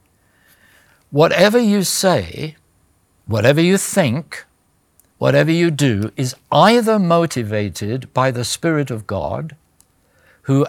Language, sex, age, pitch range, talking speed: English, male, 60-79, 115-160 Hz, 100 wpm